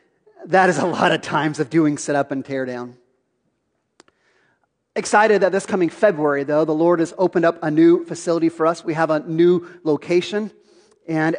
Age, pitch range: 30-49, 165-210 Hz